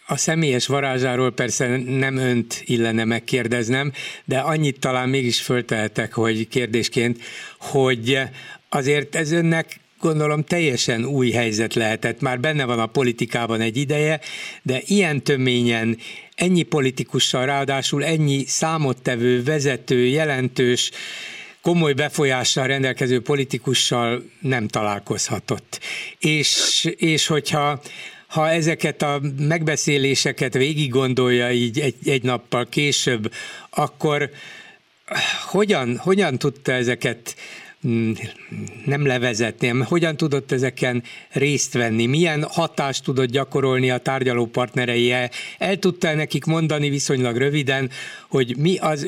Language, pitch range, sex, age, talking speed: Hungarian, 125-150 Hz, male, 60-79, 110 wpm